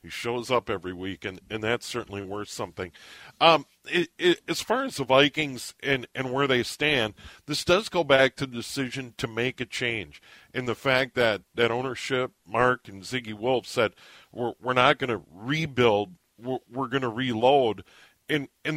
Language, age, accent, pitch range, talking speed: English, 50-69, American, 115-140 Hz, 190 wpm